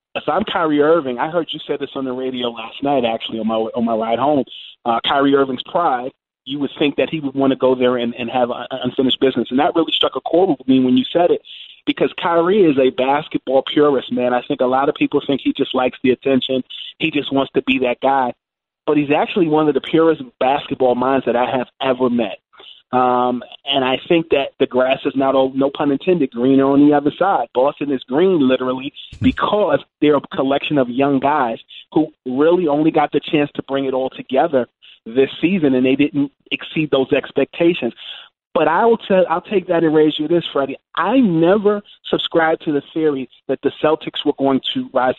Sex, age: male, 30-49